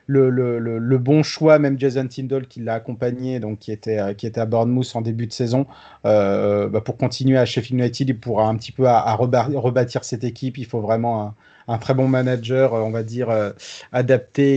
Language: French